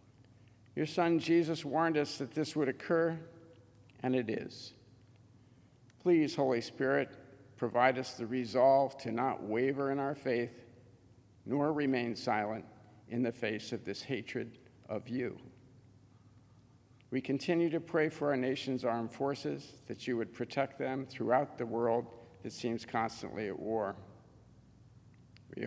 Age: 50-69